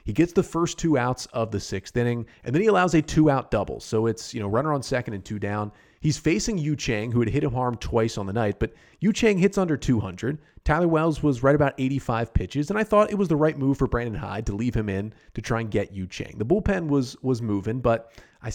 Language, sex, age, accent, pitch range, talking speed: English, male, 30-49, American, 105-125 Hz, 265 wpm